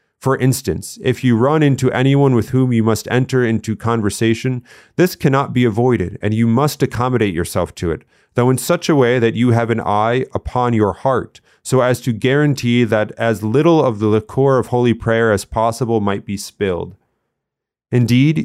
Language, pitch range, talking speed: English, 110-130 Hz, 185 wpm